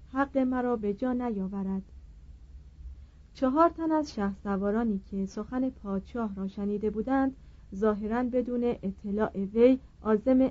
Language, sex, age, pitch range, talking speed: Persian, female, 40-59, 195-245 Hz, 110 wpm